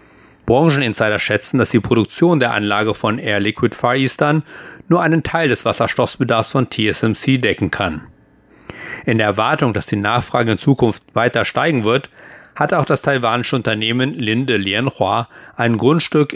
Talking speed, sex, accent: 150 wpm, male, German